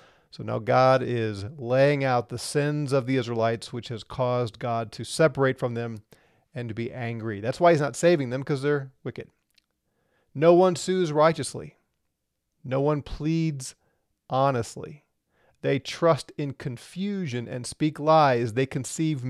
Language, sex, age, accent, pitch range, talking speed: English, male, 40-59, American, 120-150 Hz, 150 wpm